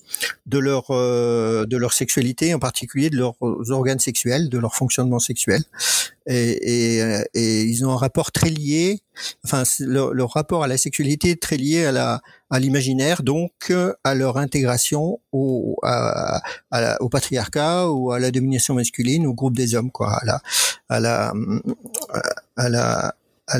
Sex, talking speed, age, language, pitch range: male, 175 wpm, 50-69, French, 125-150 Hz